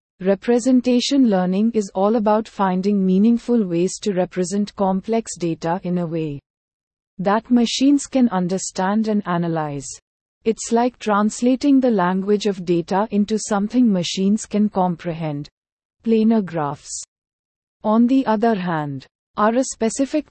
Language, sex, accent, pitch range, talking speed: English, female, Indian, 175-220 Hz, 125 wpm